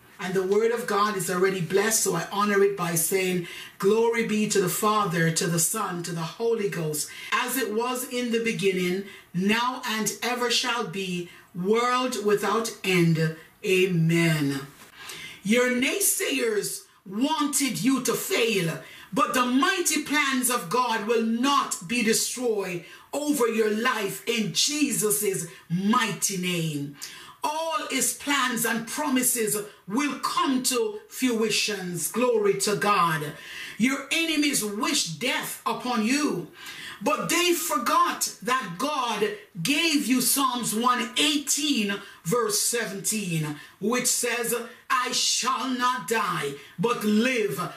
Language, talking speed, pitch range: English, 125 wpm, 200-250 Hz